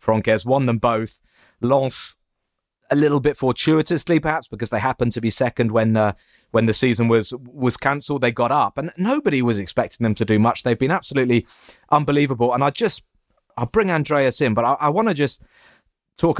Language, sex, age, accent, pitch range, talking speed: English, male, 30-49, British, 115-145 Hz, 200 wpm